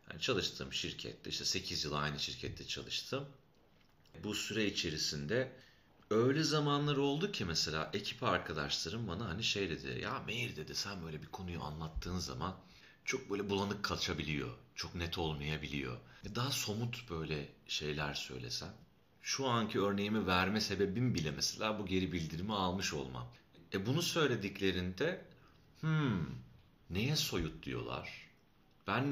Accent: native